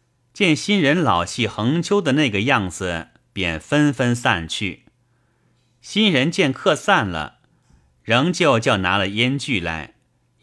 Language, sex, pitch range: Chinese, male, 95-125 Hz